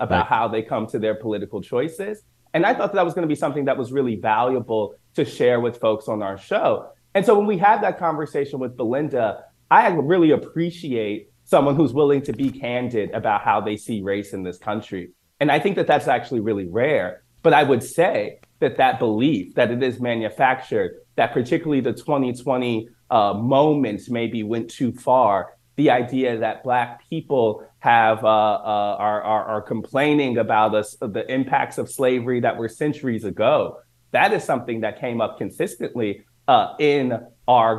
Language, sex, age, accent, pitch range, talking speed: English, male, 30-49, American, 110-145 Hz, 185 wpm